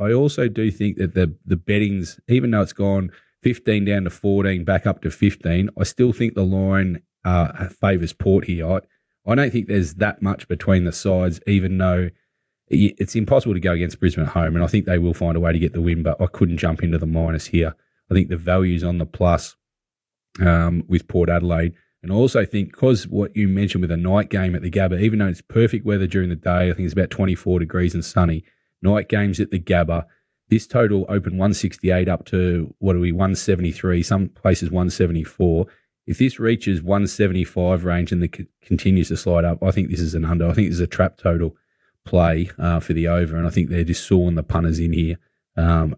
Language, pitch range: English, 85-100 Hz